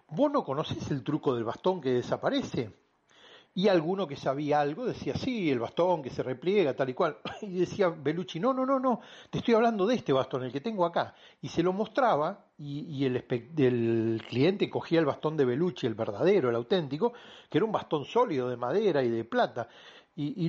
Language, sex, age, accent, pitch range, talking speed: Spanish, male, 40-59, Argentinian, 125-190 Hz, 210 wpm